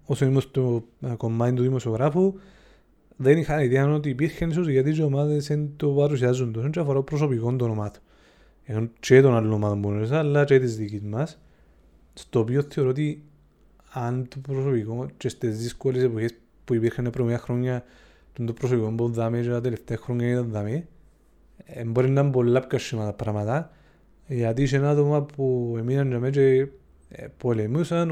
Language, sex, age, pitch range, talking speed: Greek, male, 30-49, 120-150 Hz, 45 wpm